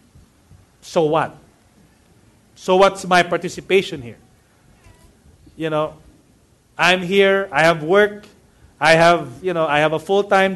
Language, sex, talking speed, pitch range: English, male, 125 wpm, 160-210 Hz